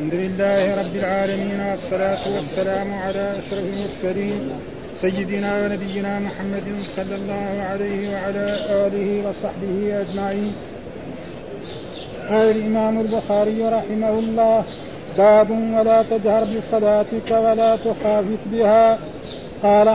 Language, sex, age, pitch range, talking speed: Arabic, male, 50-69, 210-225 Hz, 95 wpm